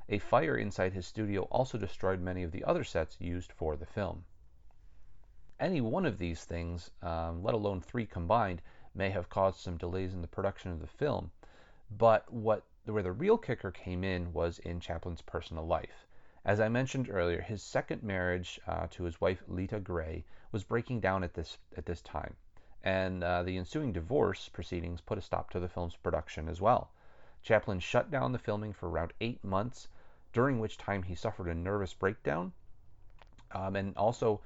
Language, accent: English, American